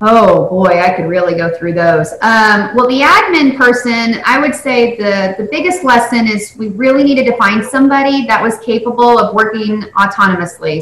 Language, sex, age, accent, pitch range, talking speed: English, female, 30-49, American, 180-235 Hz, 185 wpm